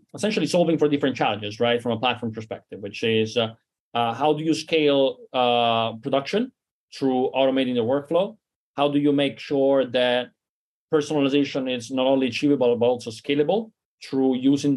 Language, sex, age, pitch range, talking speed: English, male, 30-49, 115-140 Hz, 165 wpm